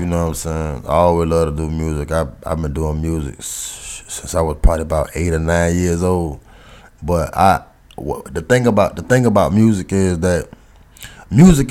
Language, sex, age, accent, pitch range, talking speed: English, male, 20-39, American, 85-105 Hz, 205 wpm